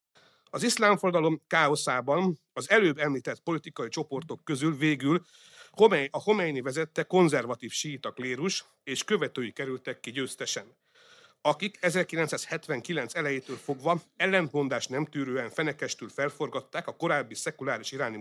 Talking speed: 110 wpm